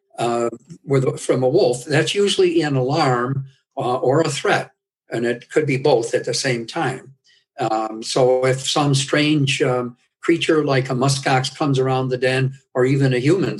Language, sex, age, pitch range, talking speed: English, male, 60-79, 125-145 Hz, 175 wpm